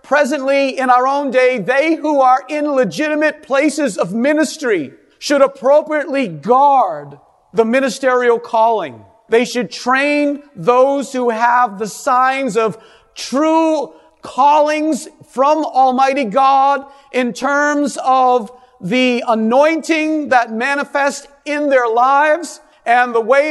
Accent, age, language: American, 50-69, English